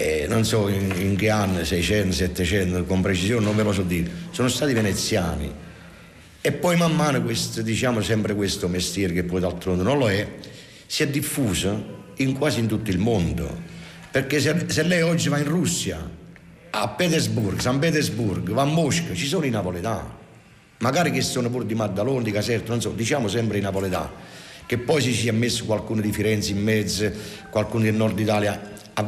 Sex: male